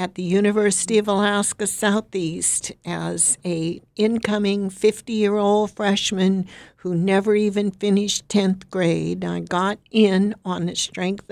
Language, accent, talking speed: English, American, 120 wpm